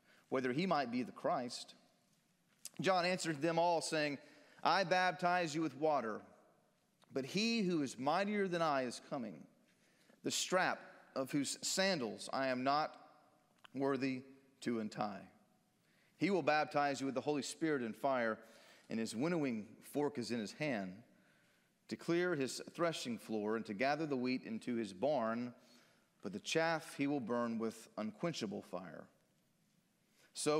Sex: male